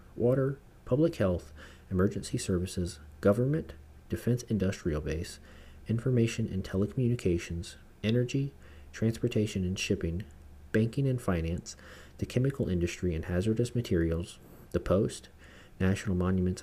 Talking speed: 105 wpm